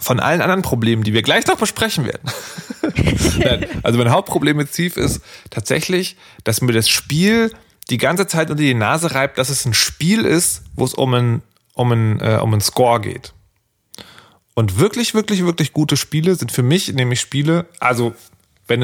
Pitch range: 105-145 Hz